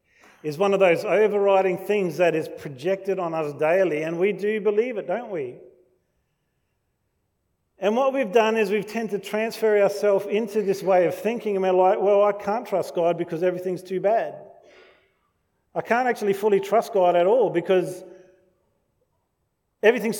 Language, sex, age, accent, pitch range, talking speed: English, male, 40-59, Australian, 155-210 Hz, 165 wpm